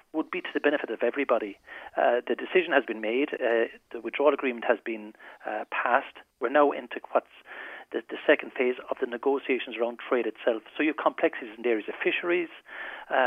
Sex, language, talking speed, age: male, English, 205 wpm, 40-59